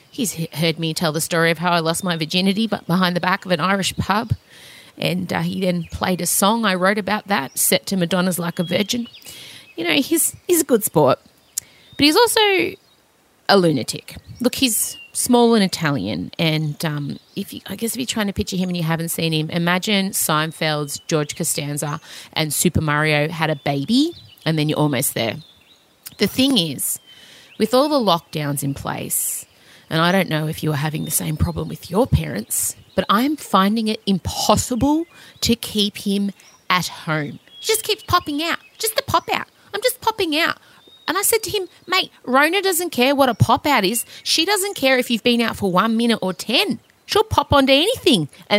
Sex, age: female, 30-49